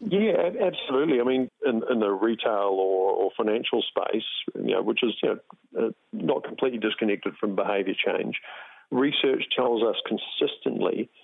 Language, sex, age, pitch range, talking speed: English, male, 50-69, 100-125 Hz, 130 wpm